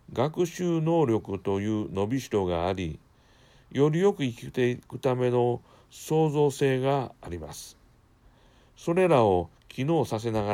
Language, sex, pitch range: Japanese, male, 90-130 Hz